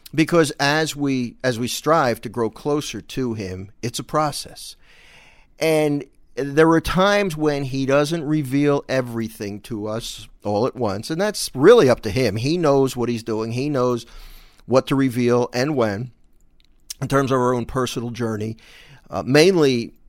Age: 50-69